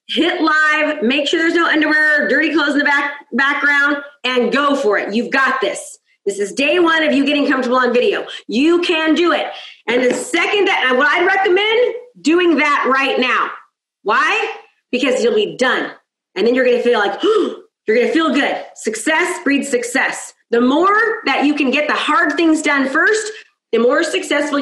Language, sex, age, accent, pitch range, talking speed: English, female, 30-49, American, 280-375 Hz, 195 wpm